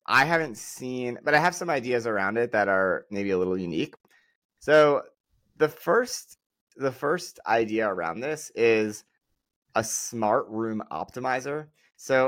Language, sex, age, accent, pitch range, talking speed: English, male, 20-39, American, 105-130 Hz, 145 wpm